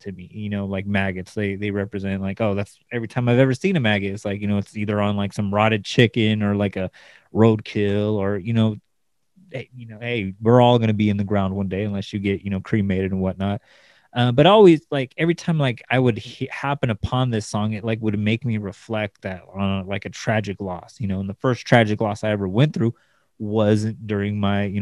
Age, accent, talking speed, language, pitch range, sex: 20-39, American, 235 wpm, English, 100-120 Hz, male